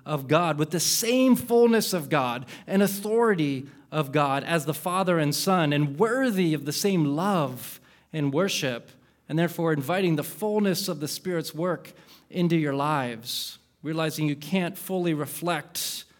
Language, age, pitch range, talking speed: English, 20-39, 140-175 Hz, 155 wpm